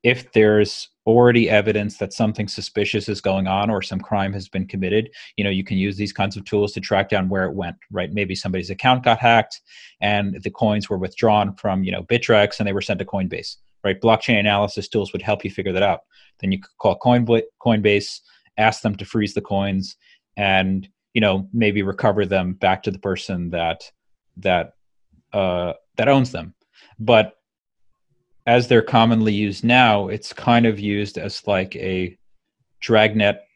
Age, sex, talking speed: 30-49, male, 185 wpm